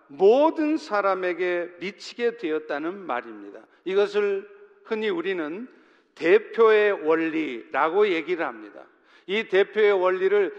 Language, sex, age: Korean, male, 50-69